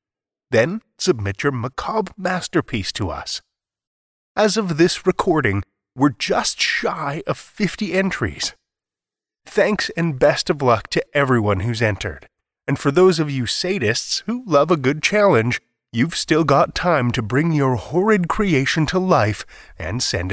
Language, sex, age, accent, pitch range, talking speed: English, male, 30-49, American, 110-180 Hz, 150 wpm